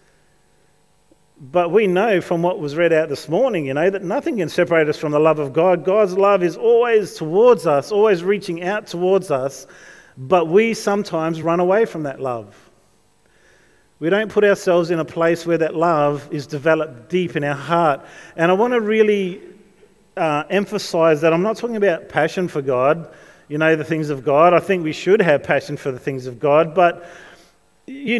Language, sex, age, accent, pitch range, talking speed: English, male, 40-59, Australian, 155-195 Hz, 195 wpm